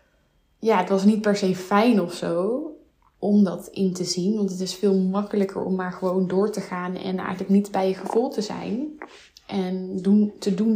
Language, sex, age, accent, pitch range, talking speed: Dutch, female, 20-39, Dutch, 185-205 Hz, 205 wpm